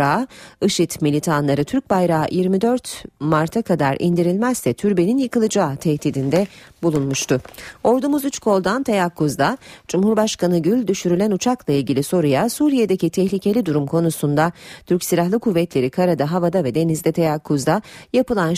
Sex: female